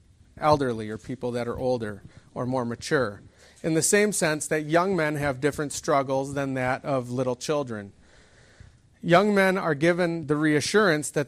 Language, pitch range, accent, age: English, 125-165 Hz, American, 40-59